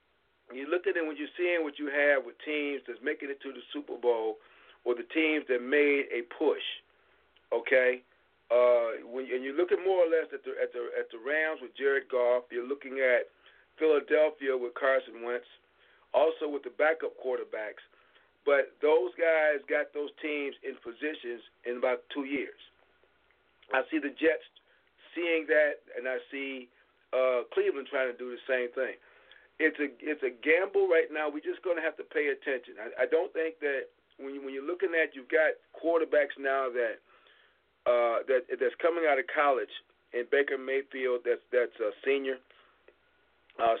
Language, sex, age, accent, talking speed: English, male, 40-59, American, 180 wpm